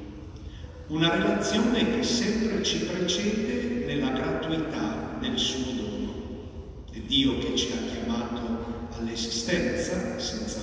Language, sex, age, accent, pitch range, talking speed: Italian, male, 50-69, native, 110-170 Hz, 105 wpm